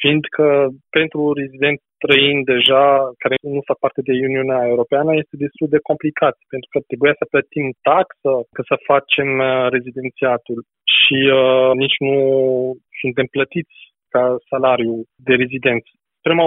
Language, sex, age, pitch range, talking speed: Romanian, male, 20-39, 135-155 Hz, 135 wpm